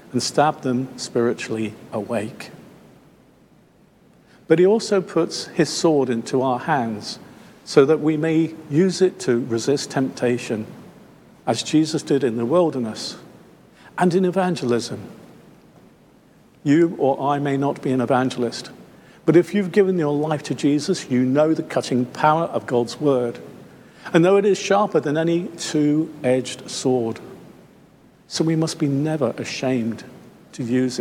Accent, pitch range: British, 125-160 Hz